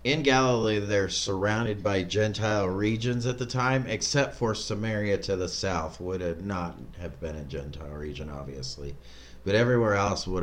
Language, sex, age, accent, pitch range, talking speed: English, male, 30-49, American, 75-120 Hz, 165 wpm